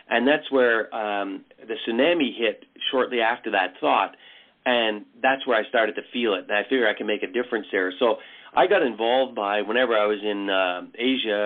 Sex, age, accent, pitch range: male, 40-59, American, 105-130 Hz